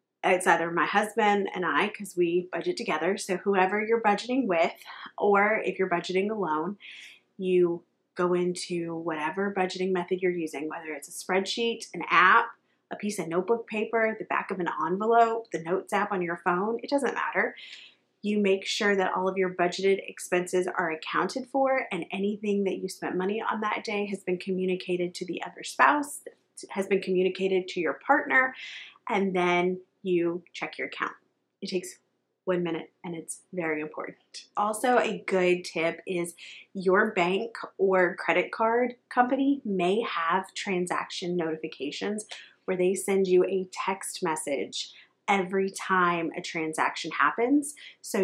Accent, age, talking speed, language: American, 30-49, 160 wpm, English